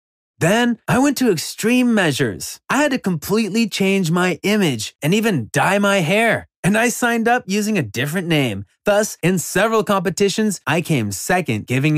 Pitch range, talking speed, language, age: 150-215 Hz, 170 wpm, English, 30-49